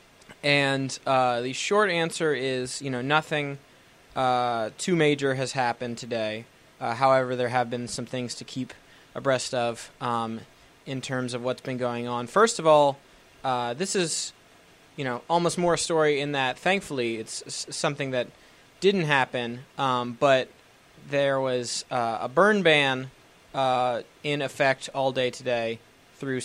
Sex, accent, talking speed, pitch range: male, American, 155 wpm, 120-145 Hz